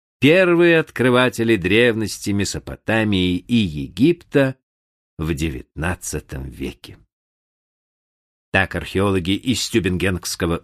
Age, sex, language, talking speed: 50-69, male, Russian, 75 wpm